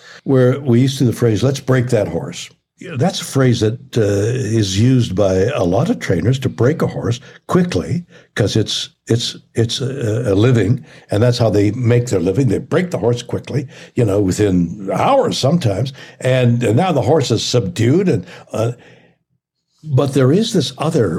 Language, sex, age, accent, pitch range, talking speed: English, male, 60-79, American, 110-145 Hz, 185 wpm